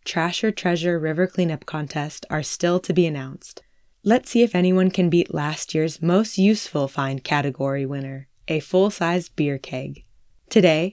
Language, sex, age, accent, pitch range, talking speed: English, female, 20-39, American, 145-185 Hz, 165 wpm